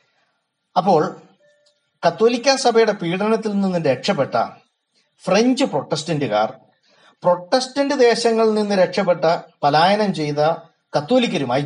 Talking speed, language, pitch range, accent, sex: 75 wpm, Malayalam, 125-195 Hz, native, male